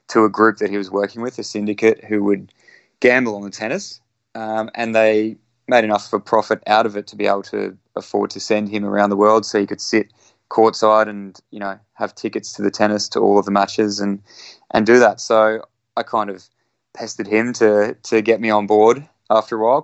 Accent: Australian